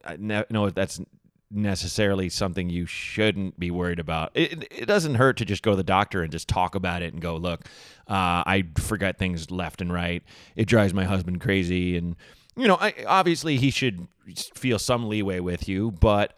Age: 30-49